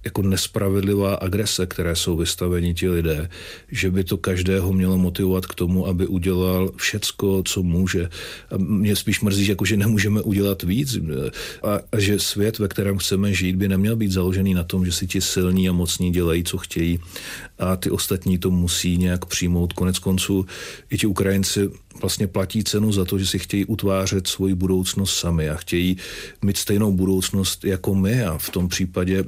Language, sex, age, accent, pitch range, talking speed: Czech, male, 40-59, native, 90-100 Hz, 180 wpm